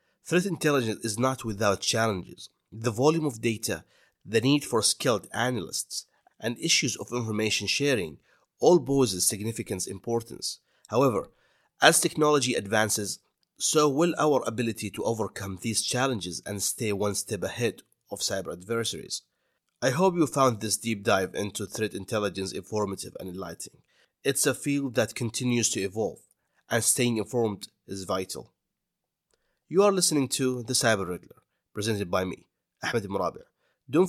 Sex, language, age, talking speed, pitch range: male, English, 30-49, 145 wpm, 105-130 Hz